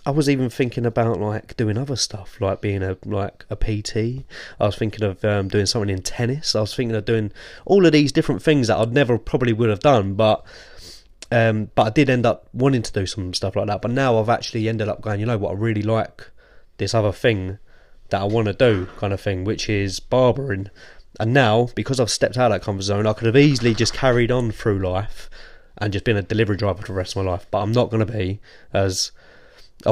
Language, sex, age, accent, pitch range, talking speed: English, male, 20-39, British, 100-120 Hz, 245 wpm